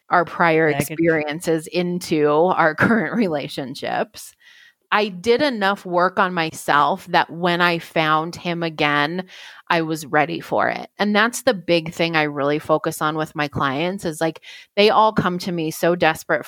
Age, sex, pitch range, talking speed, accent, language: 30-49, female, 160-205 Hz, 165 wpm, American, English